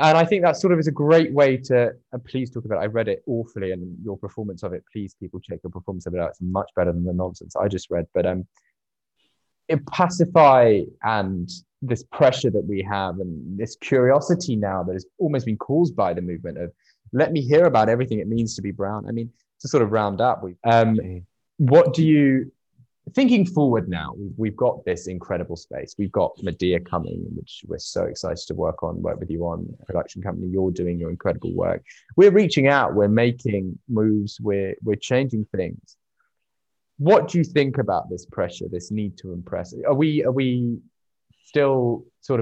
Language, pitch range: English, 95-130 Hz